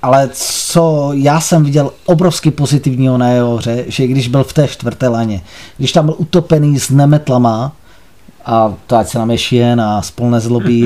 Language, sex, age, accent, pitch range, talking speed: Czech, male, 30-49, native, 125-170 Hz, 190 wpm